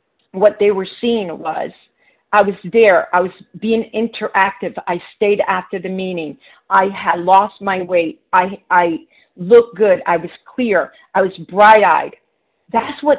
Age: 50-69